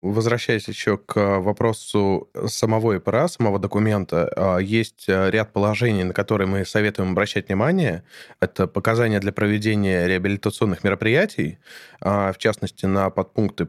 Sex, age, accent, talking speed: male, 20-39, native, 120 wpm